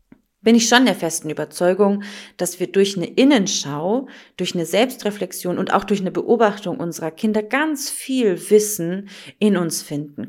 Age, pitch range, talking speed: 30-49, 180-220 Hz, 155 wpm